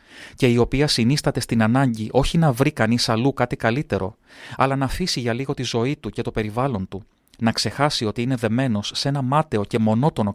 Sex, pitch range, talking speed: male, 110-140 Hz, 205 wpm